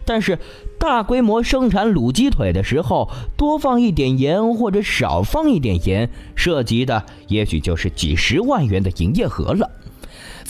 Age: 20-39